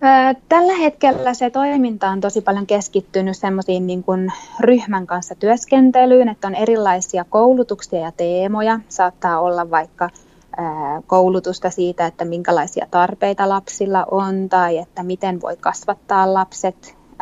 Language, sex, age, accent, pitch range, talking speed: Finnish, female, 20-39, native, 180-220 Hz, 120 wpm